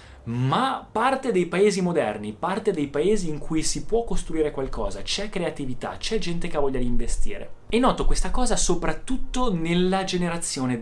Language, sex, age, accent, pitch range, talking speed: Italian, male, 20-39, native, 120-160 Hz, 165 wpm